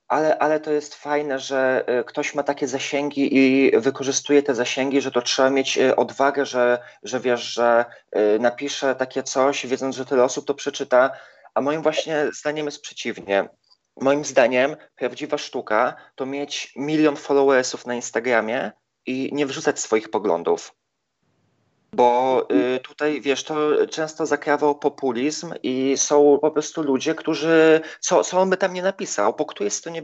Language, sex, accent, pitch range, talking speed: Polish, male, native, 135-155 Hz, 160 wpm